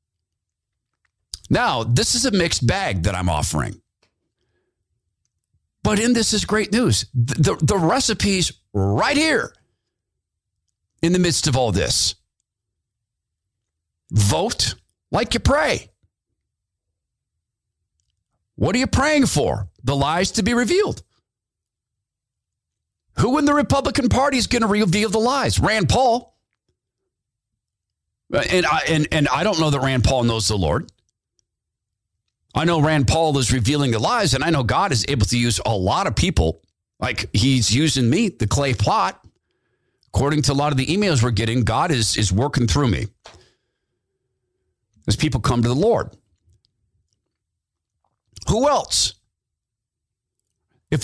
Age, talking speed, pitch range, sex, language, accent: 50-69, 140 wpm, 95-145 Hz, male, English, American